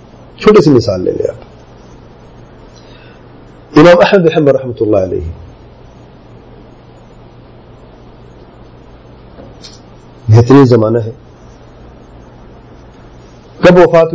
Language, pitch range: English, 120-165 Hz